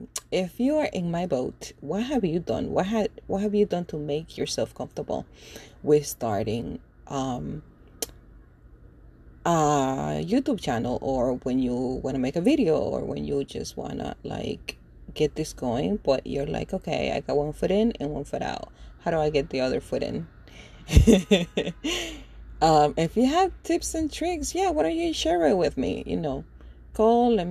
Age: 30-49